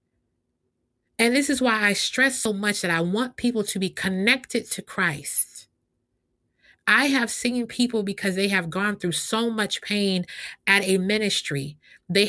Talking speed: 160 wpm